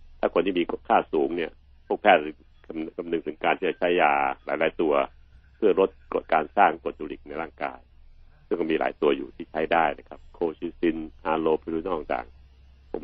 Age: 60-79